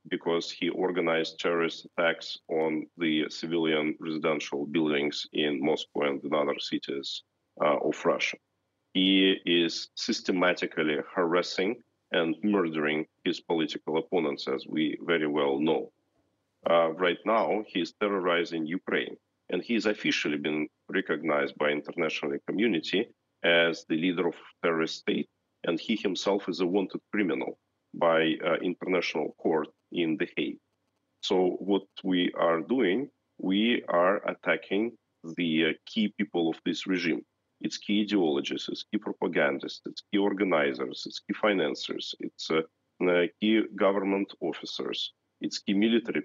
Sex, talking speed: male, 135 wpm